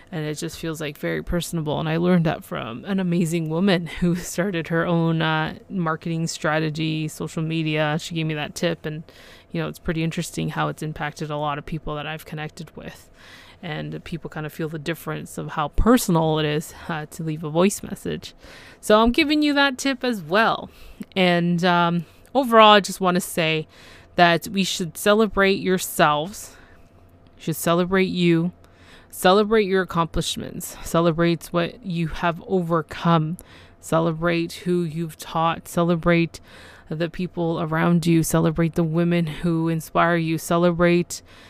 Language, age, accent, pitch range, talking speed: English, 20-39, American, 155-185 Hz, 160 wpm